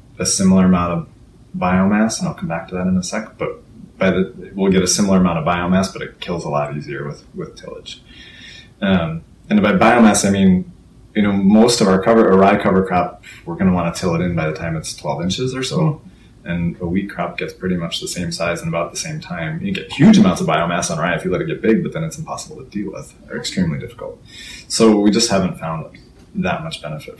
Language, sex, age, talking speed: English, male, 30-49, 245 wpm